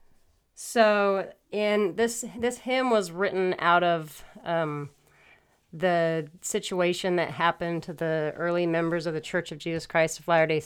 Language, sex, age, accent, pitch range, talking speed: English, female, 30-49, American, 155-175 Hz, 145 wpm